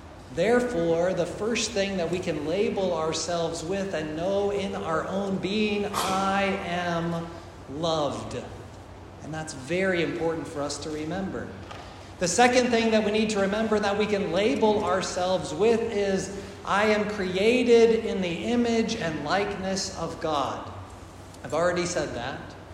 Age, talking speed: 40-59, 150 wpm